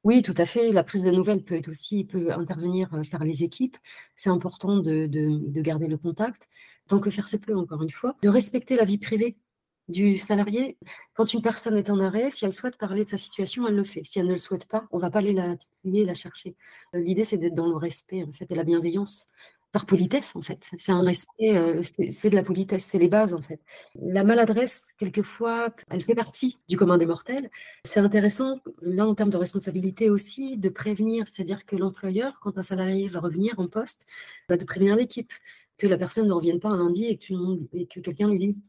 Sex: female